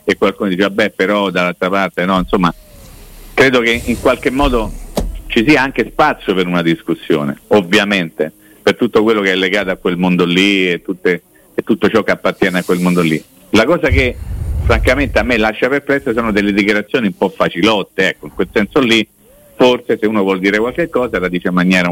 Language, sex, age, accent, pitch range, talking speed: Italian, male, 50-69, native, 95-115 Hz, 200 wpm